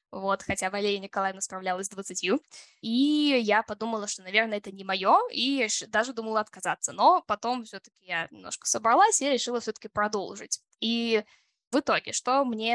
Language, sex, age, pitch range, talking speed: Russian, female, 10-29, 205-270 Hz, 160 wpm